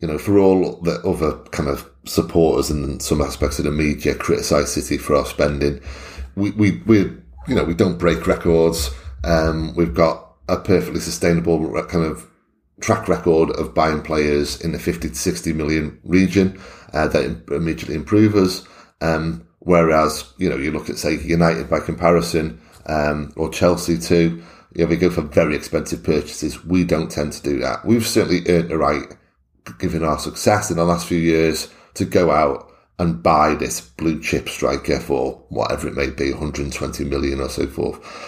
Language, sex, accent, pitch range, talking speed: English, male, British, 75-90 Hz, 185 wpm